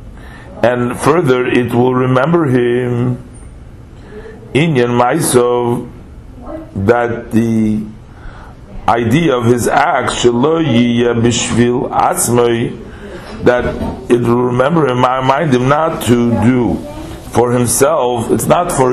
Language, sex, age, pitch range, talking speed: English, male, 50-69, 120-130 Hz, 100 wpm